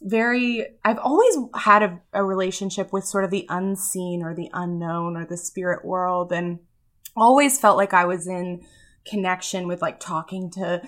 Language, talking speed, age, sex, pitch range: English, 170 wpm, 20-39, female, 175-210 Hz